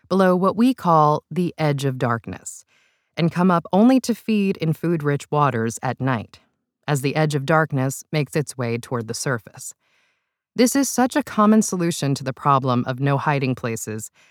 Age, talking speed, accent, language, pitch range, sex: 20-39, 185 wpm, American, English, 135-215 Hz, female